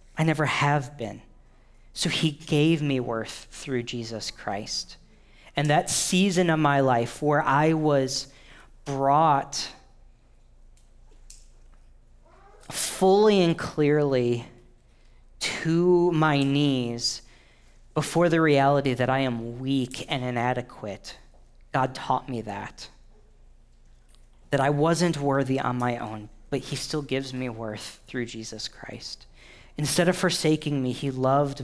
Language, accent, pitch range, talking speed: English, American, 115-150 Hz, 120 wpm